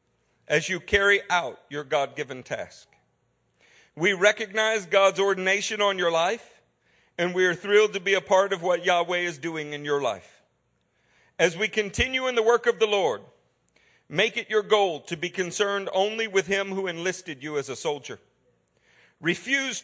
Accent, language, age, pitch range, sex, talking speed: American, English, 50-69, 145-200 Hz, male, 170 wpm